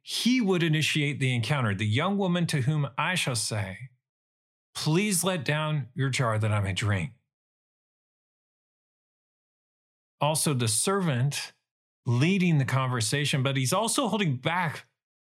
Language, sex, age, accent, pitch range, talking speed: English, male, 40-59, American, 130-175 Hz, 130 wpm